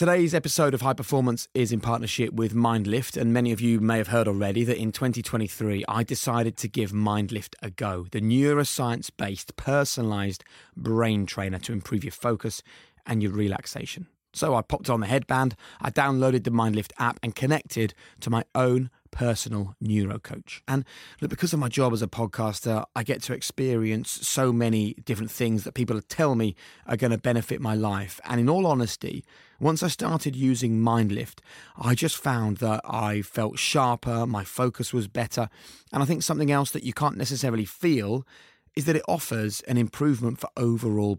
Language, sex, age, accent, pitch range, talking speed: English, male, 20-39, British, 110-135 Hz, 180 wpm